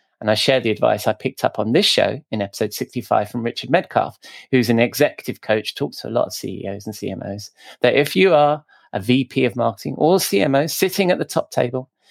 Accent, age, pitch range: British, 30-49, 110-150 Hz